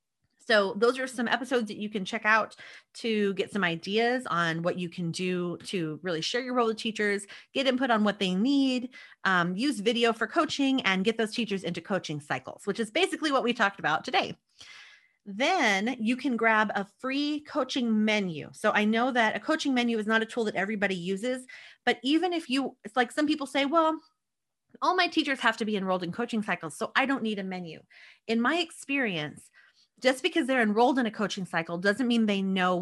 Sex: female